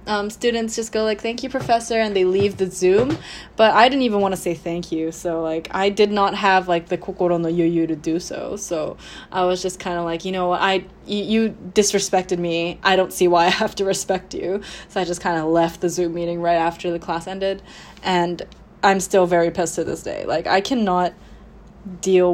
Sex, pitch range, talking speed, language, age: female, 175-220 Hz, 225 wpm, English, 10-29